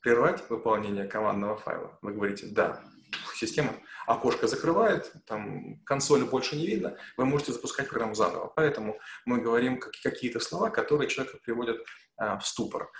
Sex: male